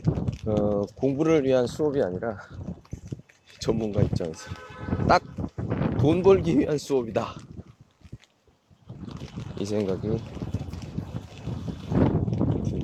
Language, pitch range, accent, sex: Chinese, 100-140 Hz, Korean, male